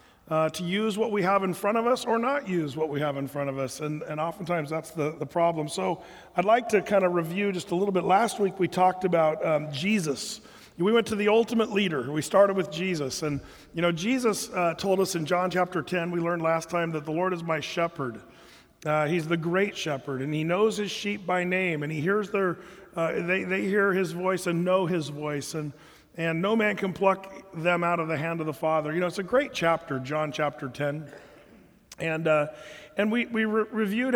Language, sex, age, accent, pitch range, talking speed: English, male, 40-59, American, 155-195 Hz, 230 wpm